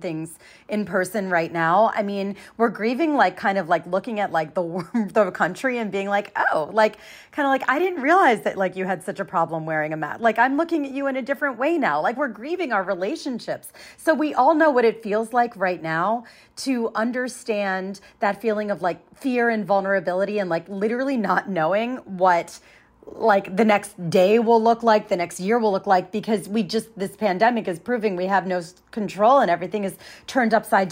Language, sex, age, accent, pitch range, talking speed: English, female, 30-49, American, 185-235 Hz, 215 wpm